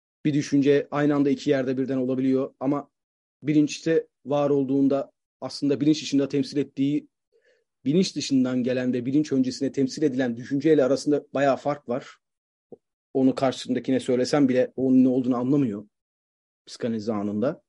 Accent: native